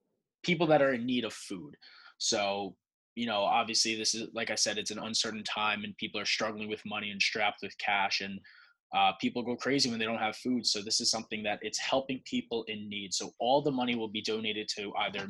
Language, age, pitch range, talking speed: English, 20-39, 105-125 Hz, 230 wpm